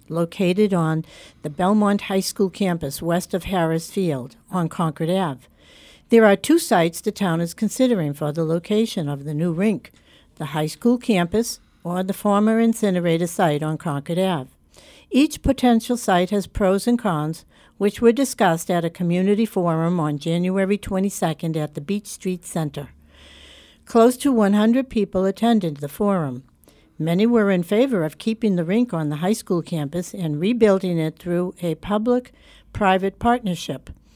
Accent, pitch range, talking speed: American, 165-210 Hz, 160 wpm